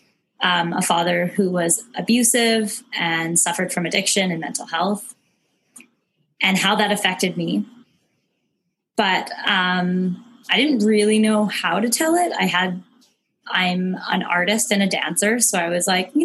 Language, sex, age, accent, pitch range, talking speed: English, female, 20-39, American, 185-240 Hz, 150 wpm